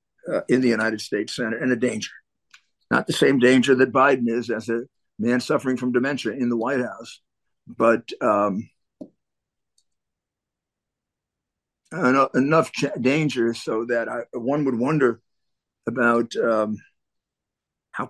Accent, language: American, English